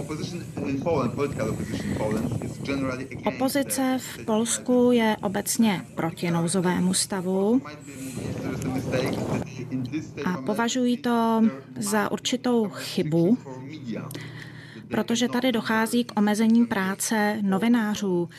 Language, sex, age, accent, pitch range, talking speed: Czech, female, 30-49, native, 160-220 Hz, 70 wpm